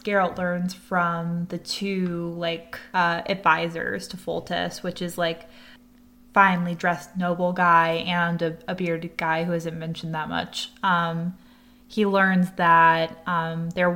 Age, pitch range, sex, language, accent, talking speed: 20-39, 175-210 Hz, female, English, American, 145 wpm